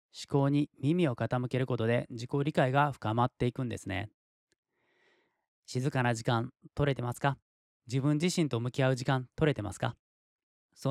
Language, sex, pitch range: Japanese, male, 120-150 Hz